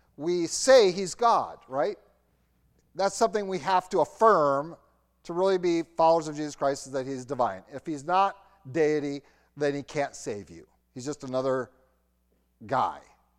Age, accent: 40-59, American